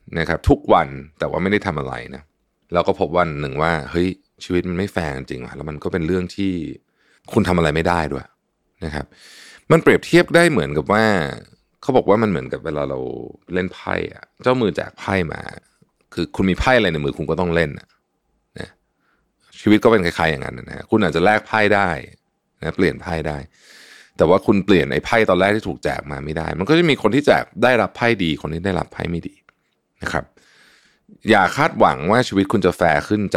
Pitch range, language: 75-95 Hz, Thai